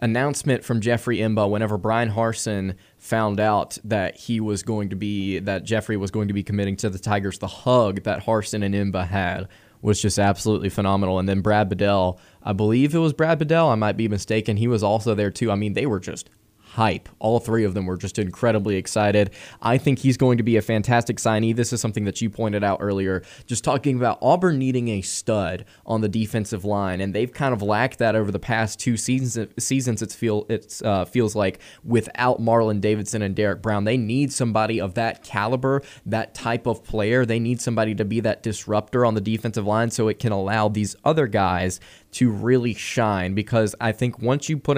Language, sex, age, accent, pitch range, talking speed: English, male, 20-39, American, 105-120 Hz, 210 wpm